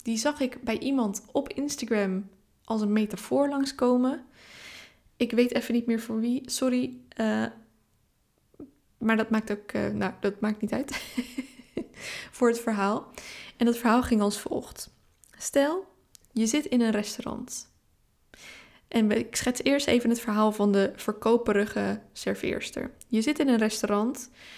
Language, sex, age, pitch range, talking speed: Dutch, female, 10-29, 205-245 Hz, 150 wpm